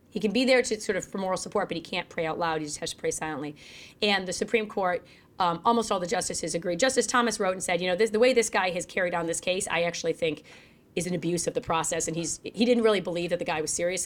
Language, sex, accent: English, female, American